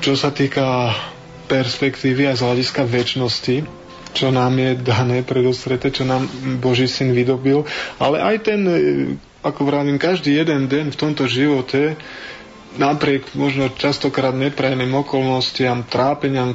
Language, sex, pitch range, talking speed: Slovak, male, 120-135 Hz, 125 wpm